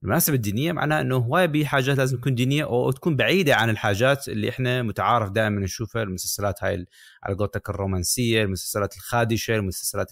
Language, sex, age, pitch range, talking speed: Arabic, male, 30-49, 100-120 Hz, 160 wpm